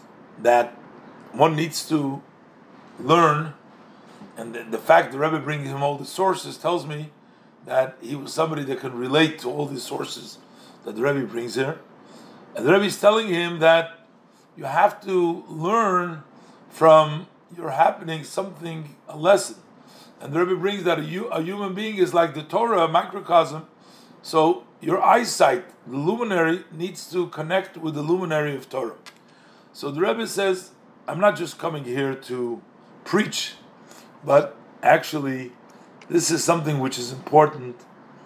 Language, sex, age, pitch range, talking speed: English, male, 50-69, 150-190 Hz, 150 wpm